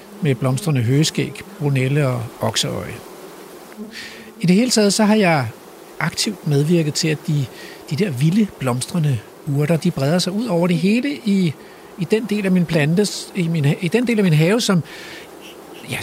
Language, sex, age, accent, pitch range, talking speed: Danish, male, 60-79, native, 150-205 Hz, 175 wpm